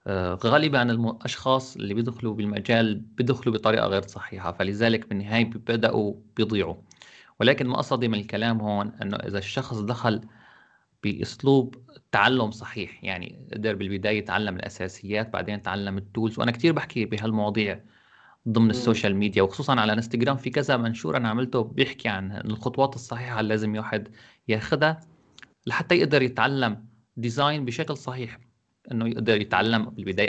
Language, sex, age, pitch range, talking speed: Arabic, male, 30-49, 110-135 Hz, 135 wpm